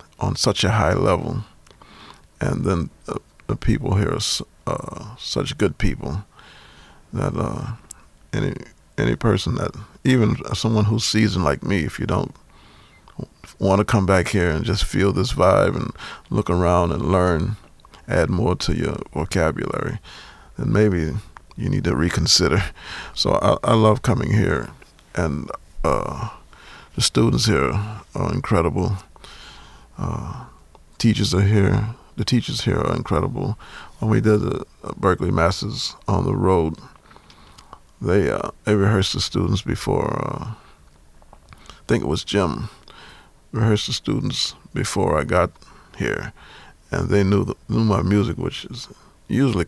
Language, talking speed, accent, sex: English, 145 wpm, American, male